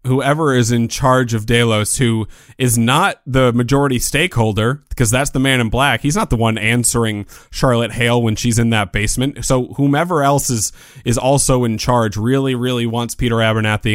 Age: 30-49